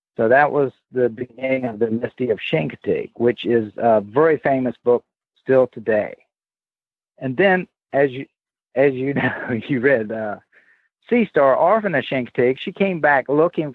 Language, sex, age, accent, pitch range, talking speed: English, male, 50-69, American, 120-150 Hz, 160 wpm